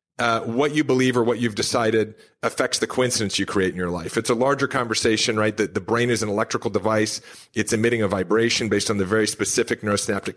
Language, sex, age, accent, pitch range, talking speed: English, male, 40-59, American, 110-135 Hz, 220 wpm